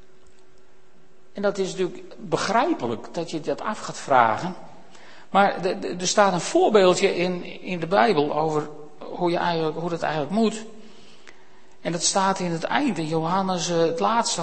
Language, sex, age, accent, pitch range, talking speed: Dutch, male, 60-79, Dutch, 150-210 Hz, 140 wpm